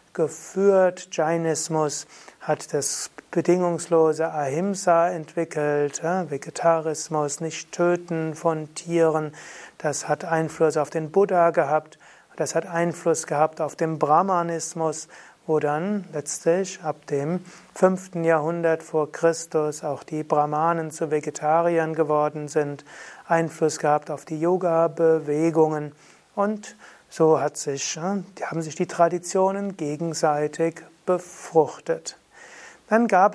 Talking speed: 105 wpm